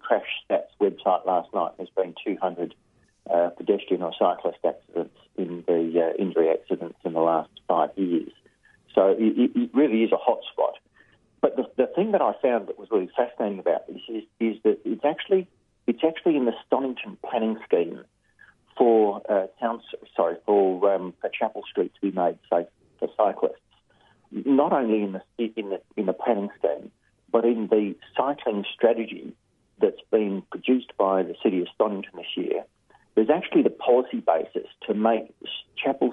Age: 40-59